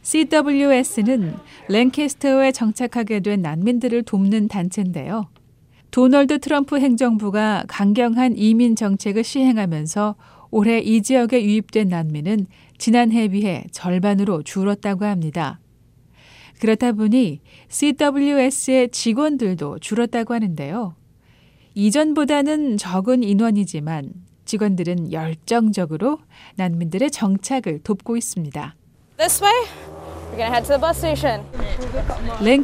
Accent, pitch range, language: native, 195-255 Hz, Korean